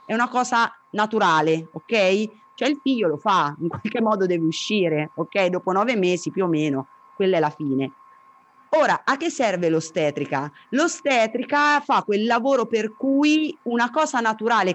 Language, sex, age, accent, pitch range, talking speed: Italian, female, 30-49, native, 180-240 Hz, 165 wpm